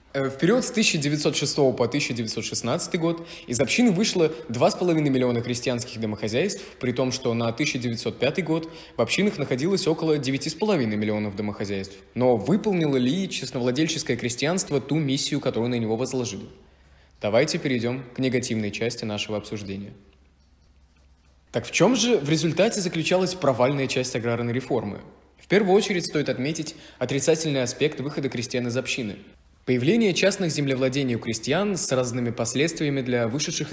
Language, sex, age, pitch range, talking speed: Russian, male, 20-39, 120-160 Hz, 135 wpm